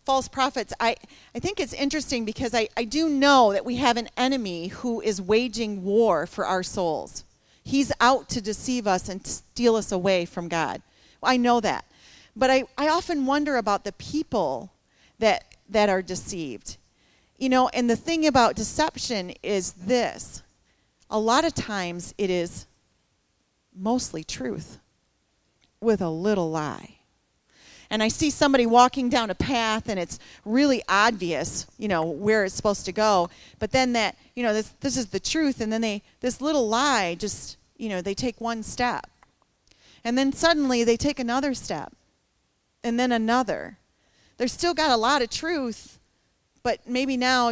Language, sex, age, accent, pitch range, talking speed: English, female, 40-59, American, 200-255 Hz, 170 wpm